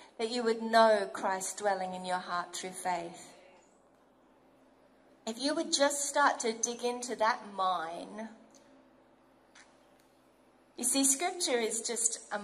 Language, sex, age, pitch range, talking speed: English, female, 40-59, 215-285 Hz, 130 wpm